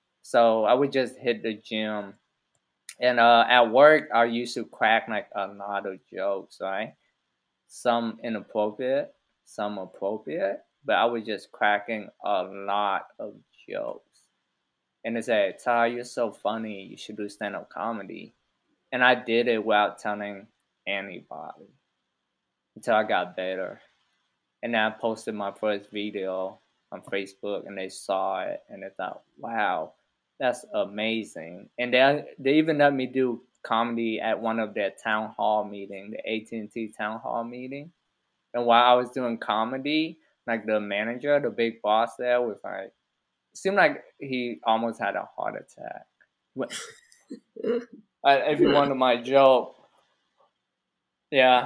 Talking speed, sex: 150 wpm, male